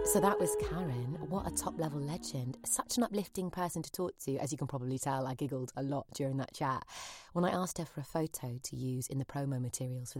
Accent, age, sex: British, 20-39, female